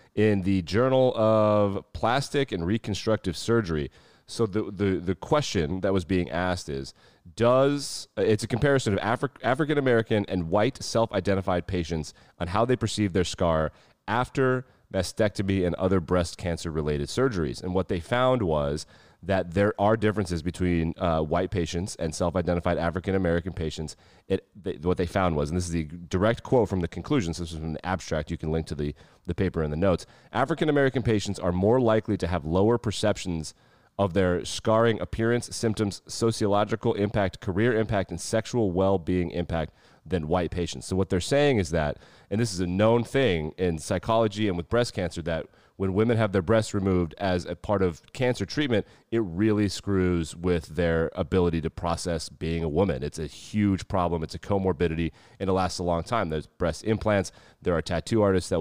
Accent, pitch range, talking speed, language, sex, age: American, 85-110 Hz, 180 wpm, English, male, 30-49